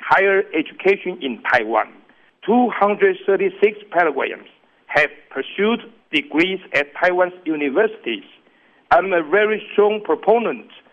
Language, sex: English, male